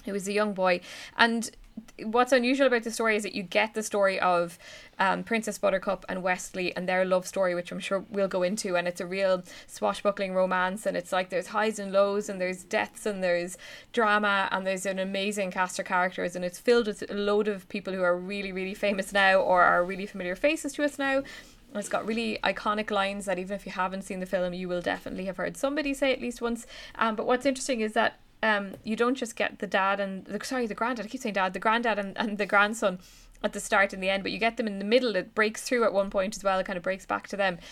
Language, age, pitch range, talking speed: English, 20-39, 190-230 Hz, 255 wpm